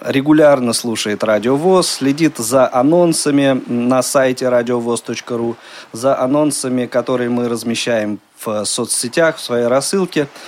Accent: native